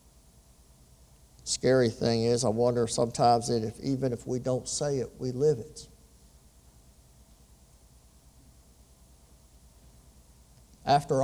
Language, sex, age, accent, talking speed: English, male, 50-69, American, 95 wpm